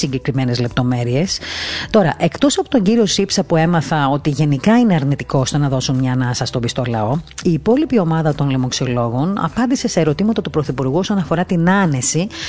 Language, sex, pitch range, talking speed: Greek, female, 130-210 Hz, 175 wpm